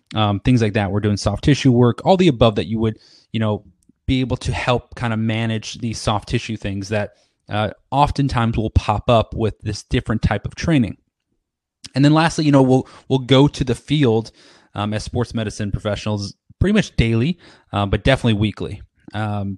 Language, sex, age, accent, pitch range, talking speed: English, male, 20-39, American, 105-130 Hz, 195 wpm